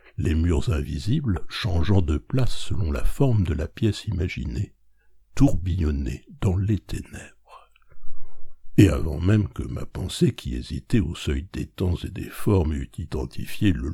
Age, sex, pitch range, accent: 60-79, male, 75-105 Hz, French